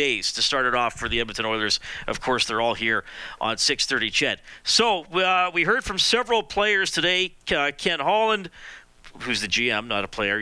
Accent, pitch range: American, 125-160 Hz